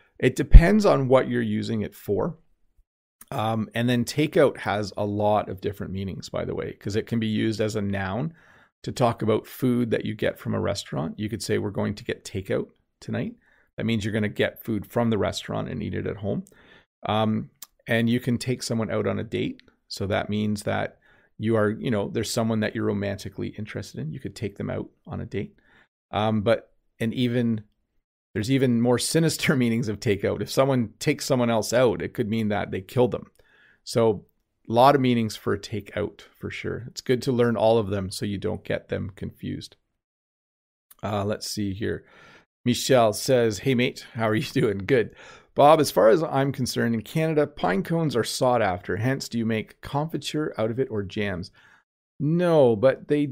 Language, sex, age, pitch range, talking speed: English, male, 30-49, 105-130 Hz, 205 wpm